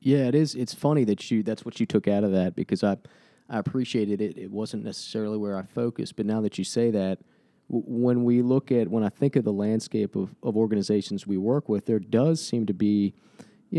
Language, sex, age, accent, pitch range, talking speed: English, male, 30-49, American, 100-120 Hz, 235 wpm